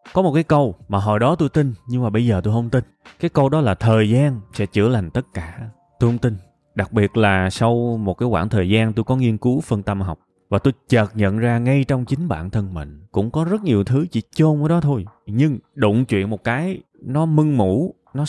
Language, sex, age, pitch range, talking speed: Vietnamese, male, 20-39, 105-140 Hz, 250 wpm